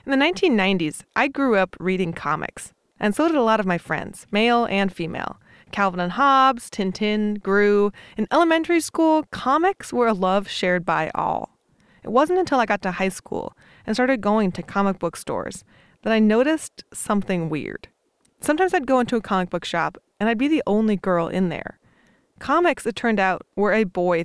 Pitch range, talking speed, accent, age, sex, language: 185-250 Hz, 190 wpm, American, 20-39, female, English